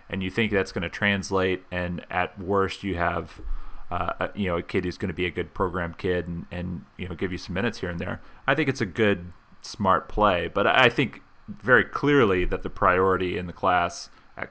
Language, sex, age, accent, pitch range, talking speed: English, male, 30-49, American, 90-105 Hz, 230 wpm